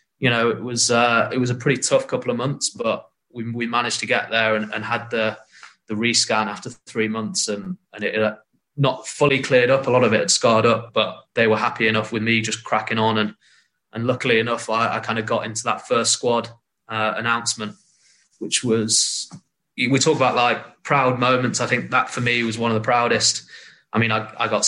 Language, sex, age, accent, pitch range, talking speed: English, male, 20-39, British, 110-125 Hz, 225 wpm